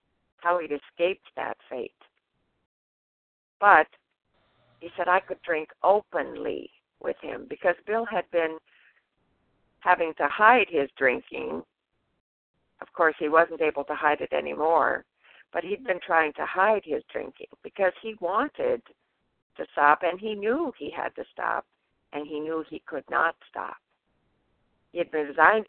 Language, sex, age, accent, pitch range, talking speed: English, female, 60-79, American, 155-190 Hz, 145 wpm